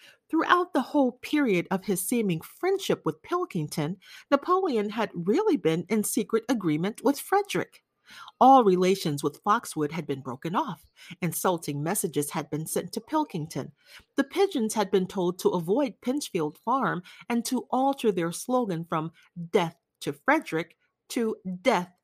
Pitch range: 170-275 Hz